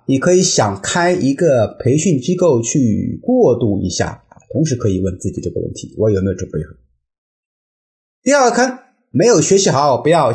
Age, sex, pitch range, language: 30-49, male, 115-175 Hz, Chinese